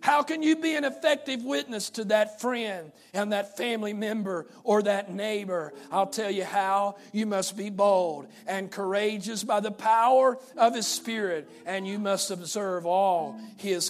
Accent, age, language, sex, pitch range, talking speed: American, 50-69, English, male, 195-235 Hz, 170 wpm